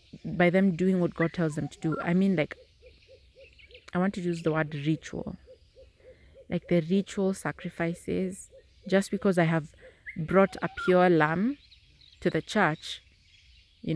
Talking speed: 150 wpm